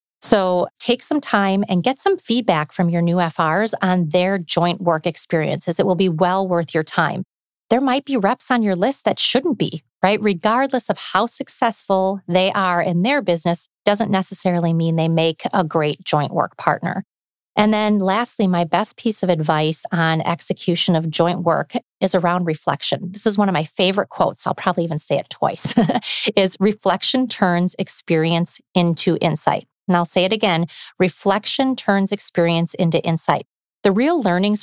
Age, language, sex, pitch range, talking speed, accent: 30-49, English, female, 170-205 Hz, 175 wpm, American